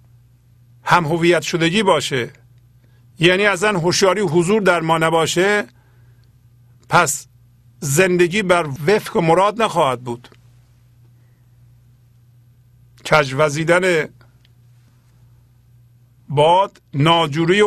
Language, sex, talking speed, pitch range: Persian, male, 70 wpm, 120-180 Hz